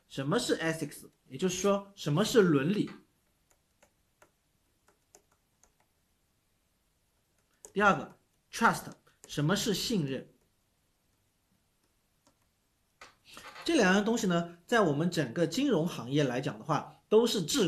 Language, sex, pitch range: Chinese, male, 145-205 Hz